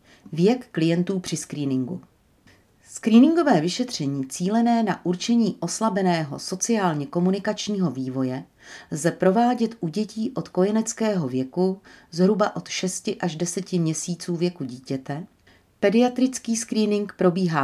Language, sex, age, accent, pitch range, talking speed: Czech, female, 40-59, native, 155-205 Hz, 105 wpm